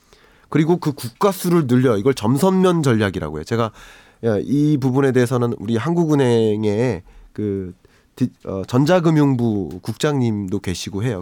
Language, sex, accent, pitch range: Korean, male, native, 115-160 Hz